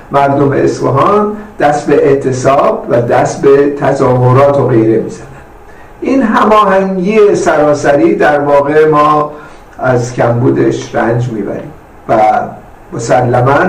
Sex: male